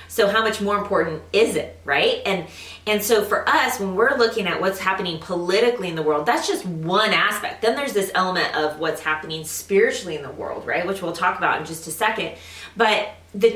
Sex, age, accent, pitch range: female, 20-39, American, 180-230 Hz